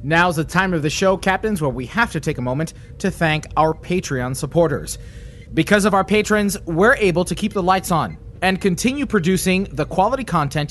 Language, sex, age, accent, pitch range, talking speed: English, male, 30-49, American, 145-195 Hz, 200 wpm